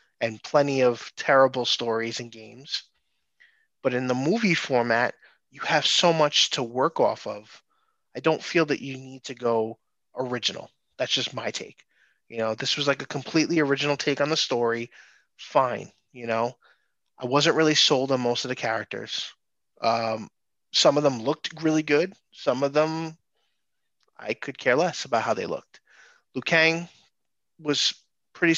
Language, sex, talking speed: English, male, 165 wpm